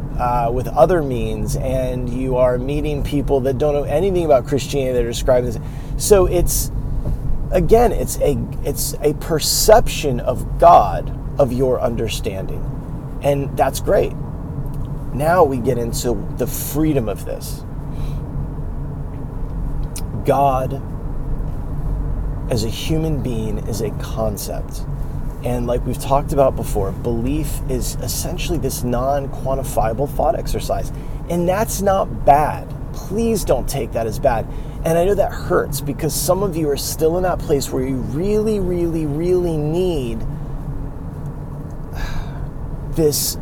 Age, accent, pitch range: 30-49, American, 130-150 Hz